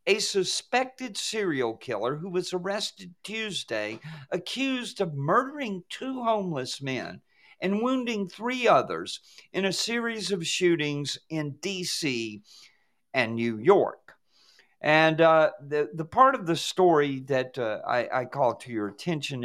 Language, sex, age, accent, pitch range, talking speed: English, male, 50-69, American, 140-215 Hz, 135 wpm